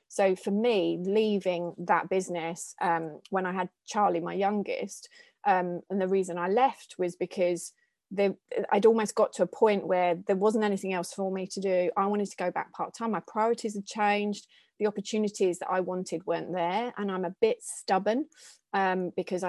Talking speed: 190 wpm